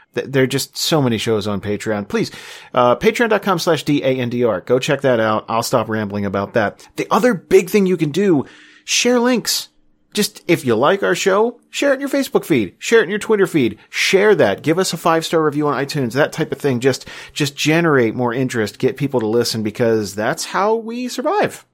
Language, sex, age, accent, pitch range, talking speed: English, male, 40-59, American, 115-180 Hz, 210 wpm